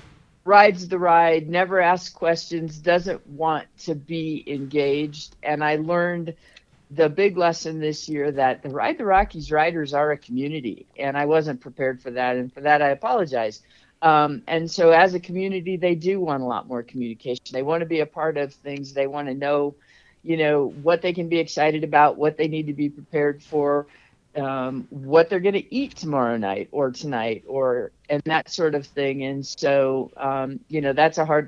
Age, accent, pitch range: 50-69, American, 135-165 Hz